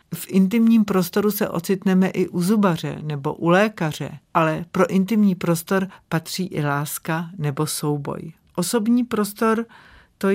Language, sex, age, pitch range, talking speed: Czech, female, 50-69, 165-190 Hz, 135 wpm